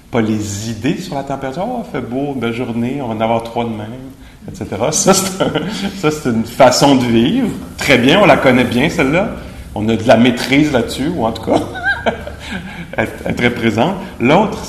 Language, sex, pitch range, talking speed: English, male, 105-135 Hz, 200 wpm